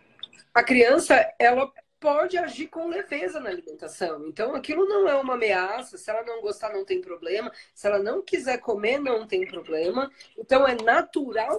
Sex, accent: female, Brazilian